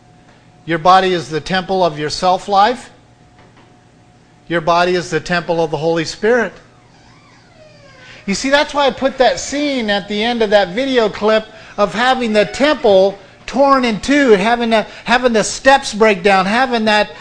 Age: 50-69